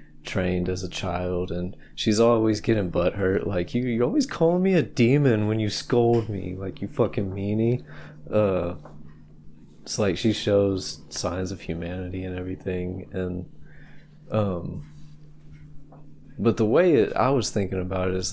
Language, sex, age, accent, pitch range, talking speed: English, male, 20-39, American, 90-110 Hz, 155 wpm